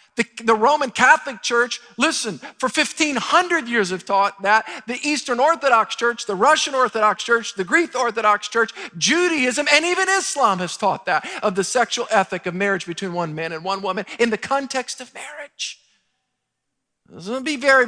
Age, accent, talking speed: 50-69, American, 170 wpm